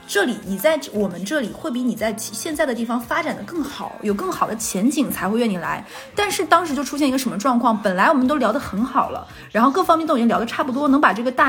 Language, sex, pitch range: Chinese, female, 220-295 Hz